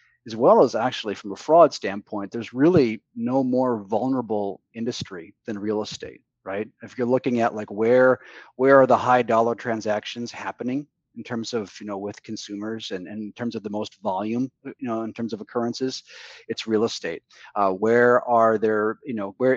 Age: 30-49